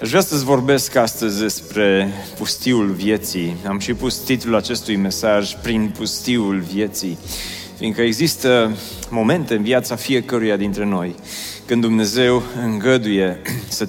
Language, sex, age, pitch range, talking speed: Romanian, male, 30-49, 100-130 Hz, 125 wpm